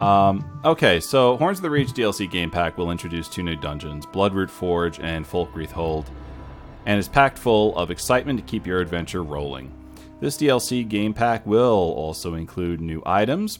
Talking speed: 175 wpm